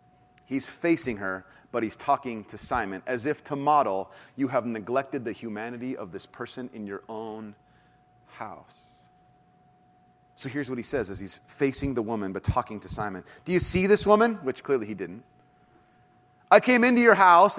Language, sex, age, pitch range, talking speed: English, male, 30-49, 135-185 Hz, 175 wpm